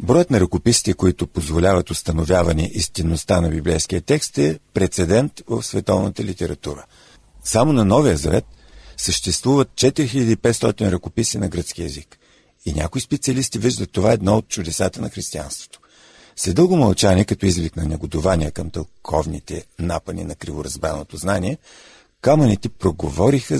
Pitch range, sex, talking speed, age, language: 80-110 Hz, male, 125 wpm, 50-69, Bulgarian